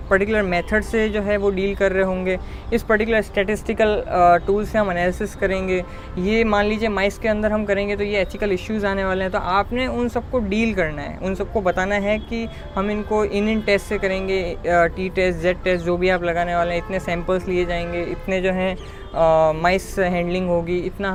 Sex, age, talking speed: female, 20-39, 205 wpm